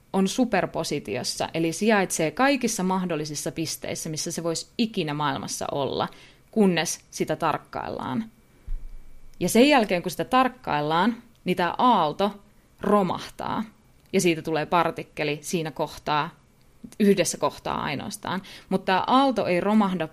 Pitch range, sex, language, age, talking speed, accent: 155-210 Hz, female, Finnish, 20-39, 120 wpm, native